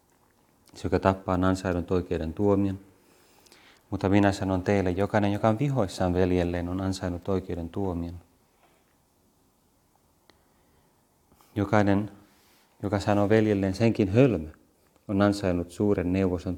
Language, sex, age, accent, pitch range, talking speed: Finnish, male, 30-49, native, 85-100 Hz, 110 wpm